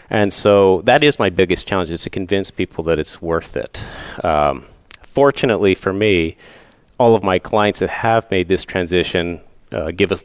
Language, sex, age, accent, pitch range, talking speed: English, male, 40-59, American, 90-110 Hz, 180 wpm